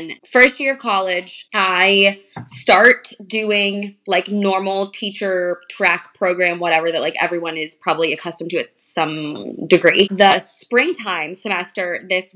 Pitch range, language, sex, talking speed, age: 180-215 Hz, English, female, 130 wpm, 20-39